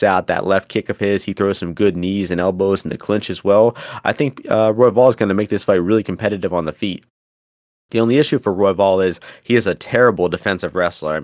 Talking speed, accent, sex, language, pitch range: 255 wpm, American, male, English, 95-120 Hz